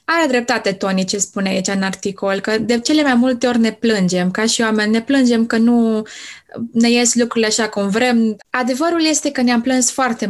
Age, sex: 20-39, female